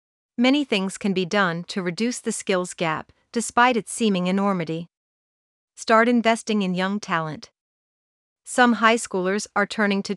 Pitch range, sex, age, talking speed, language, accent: 190-230 Hz, female, 40-59, 150 wpm, English, American